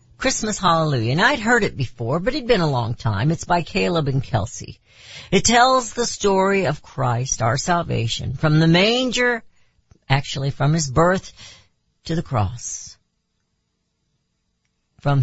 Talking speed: 145 wpm